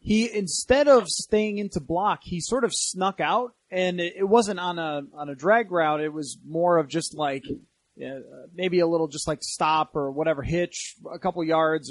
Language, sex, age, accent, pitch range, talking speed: English, male, 30-49, American, 160-210 Hz, 190 wpm